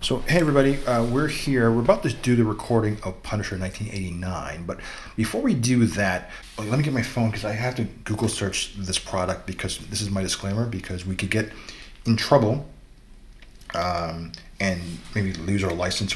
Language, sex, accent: English, male, American